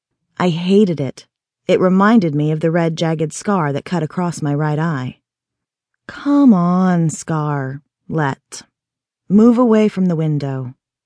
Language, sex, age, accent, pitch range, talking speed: English, female, 30-49, American, 155-230 Hz, 140 wpm